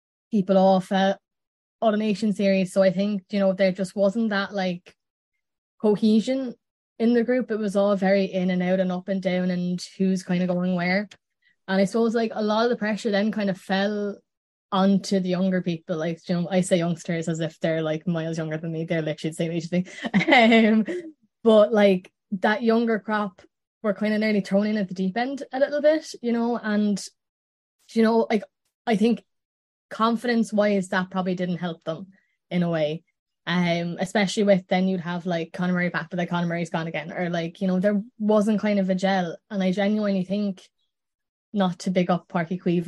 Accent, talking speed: Irish, 200 wpm